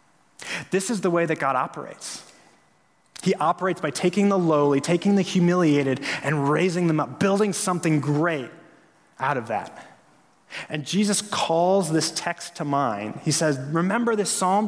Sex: male